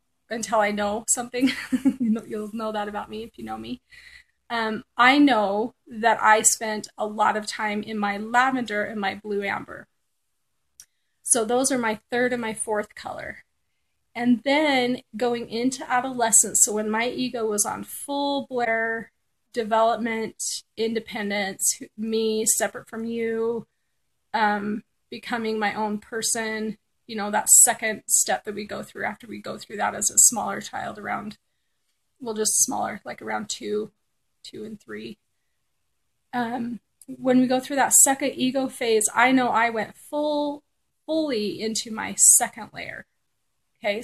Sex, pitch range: female, 215-255 Hz